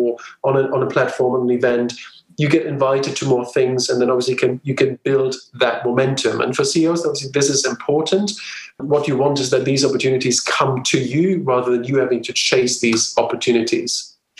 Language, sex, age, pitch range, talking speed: English, male, 40-59, 130-165 Hz, 190 wpm